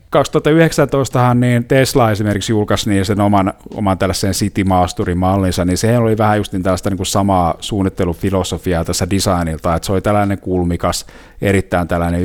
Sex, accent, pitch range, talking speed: male, native, 90-110 Hz, 145 wpm